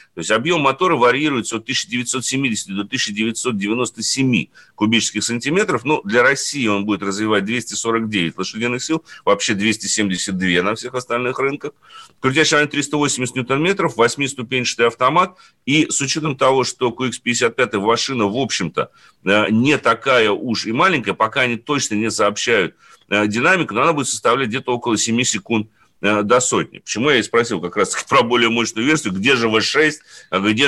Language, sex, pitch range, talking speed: Russian, male, 105-135 Hz, 150 wpm